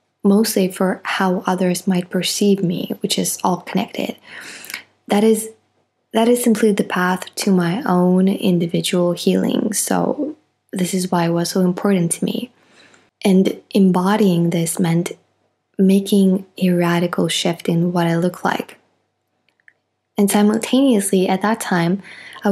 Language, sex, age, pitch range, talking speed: English, female, 20-39, 175-195 Hz, 140 wpm